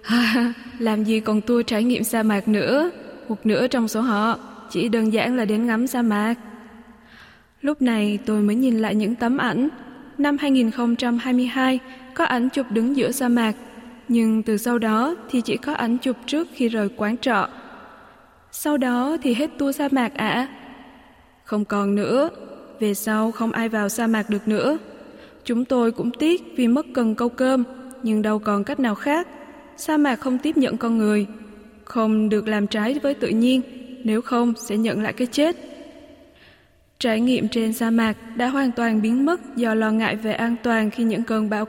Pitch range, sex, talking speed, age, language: 215-255 Hz, female, 190 wpm, 20-39, Vietnamese